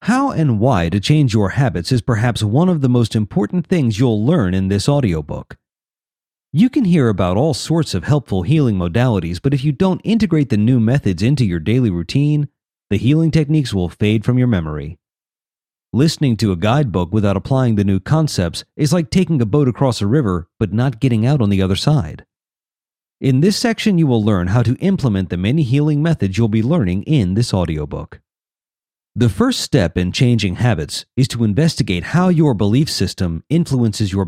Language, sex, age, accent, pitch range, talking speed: English, male, 40-59, American, 100-145 Hz, 190 wpm